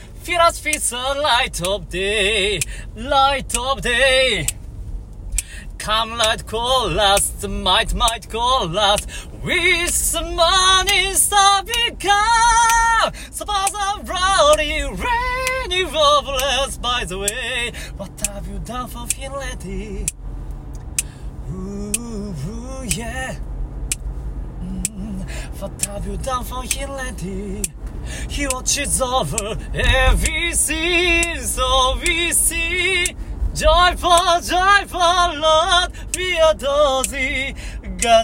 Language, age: Japanese, 30-49